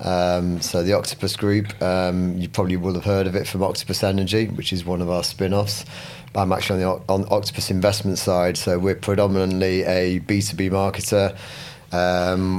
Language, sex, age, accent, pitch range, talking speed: English, male, 30-49, British, 90-100 Hz, 175 wpm